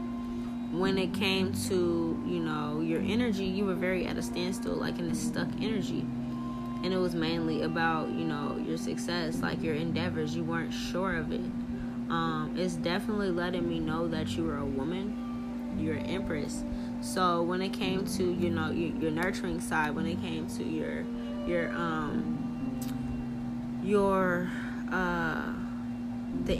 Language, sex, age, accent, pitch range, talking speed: English, female, 10-29, American, 80-120 Hz, 160 wpm